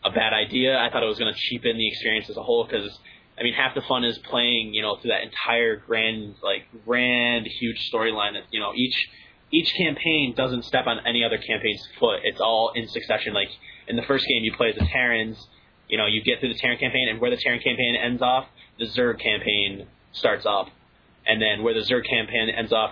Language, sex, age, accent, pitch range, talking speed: English, male, 20-39, American, 110-125 Hz, 225 wpm